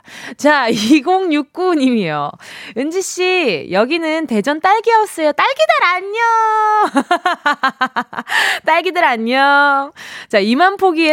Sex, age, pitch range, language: female, 20-39, 205-320 Hz, Korean